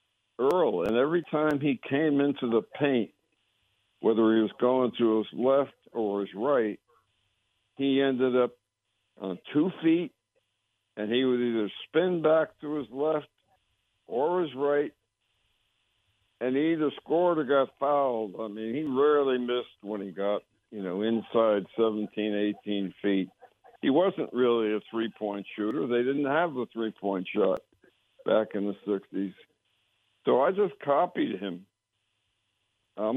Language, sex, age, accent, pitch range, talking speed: English, male, 60-79, American, 105-130 Hz, 145 wpm